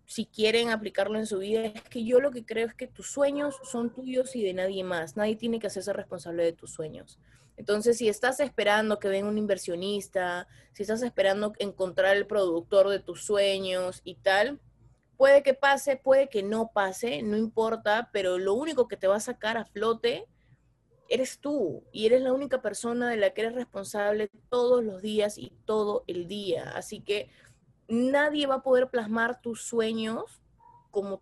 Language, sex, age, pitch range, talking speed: Spanish, female, 20-39, 195-240 Hz, 185 wpm